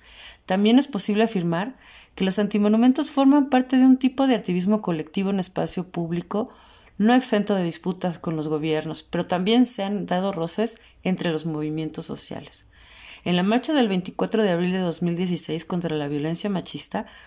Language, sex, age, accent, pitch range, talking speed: Spanish, female, 30-49, Mexican, 165-210 Hz, 165 wpm